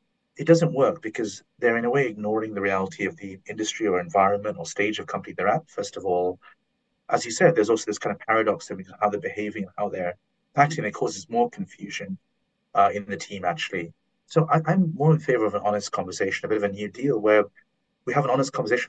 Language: English